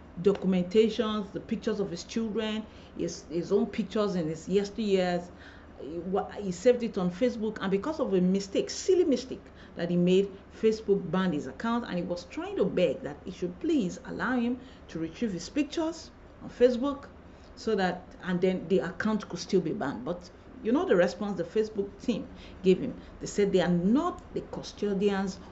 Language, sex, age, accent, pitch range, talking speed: English, female, 40-59, Nigerian, 175-235 Hz, 185 wpm